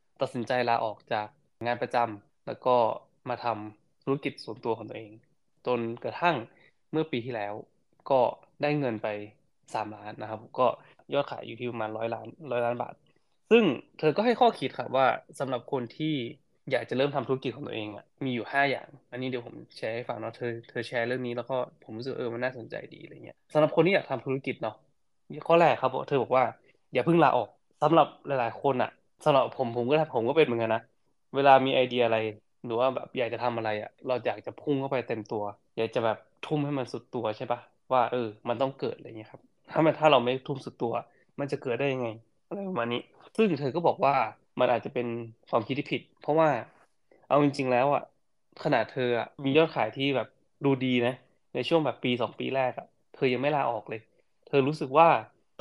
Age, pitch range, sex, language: 20-39, 115-140 Hz, male, Thai